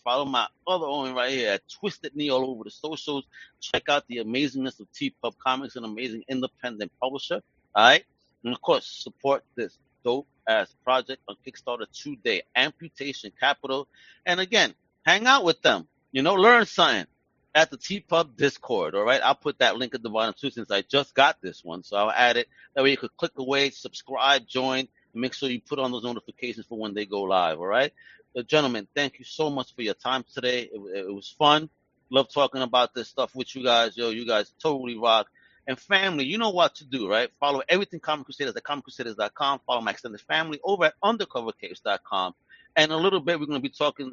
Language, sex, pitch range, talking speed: English, male, 120-155 Hz, 210 wpm